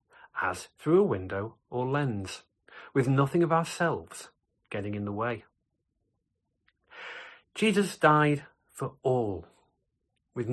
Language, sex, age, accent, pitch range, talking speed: English, male, 40-59, British, 110-155 Hz, 110 wpm